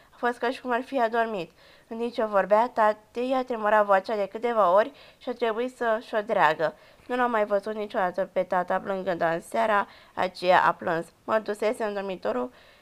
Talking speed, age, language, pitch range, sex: 200 wpm, 20-39, Romanian, 200-235 Hz, female